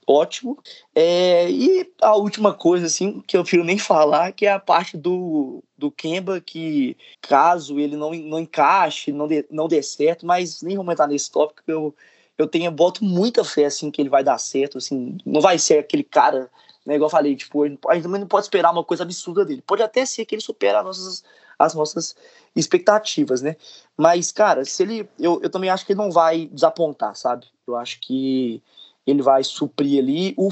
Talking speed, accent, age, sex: 205 wpm, Brazilian, 20-39, male